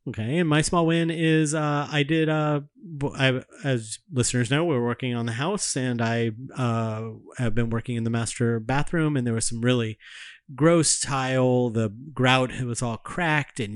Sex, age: male, 30-49